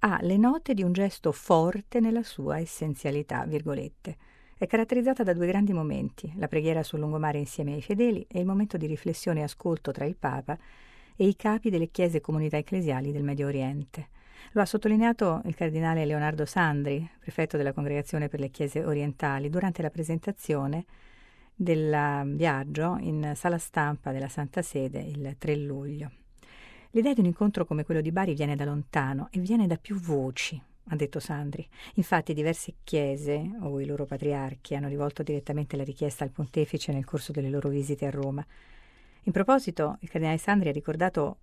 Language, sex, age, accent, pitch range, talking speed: Italian, female, 50-69, native, 145-180 Hz, 175 wpm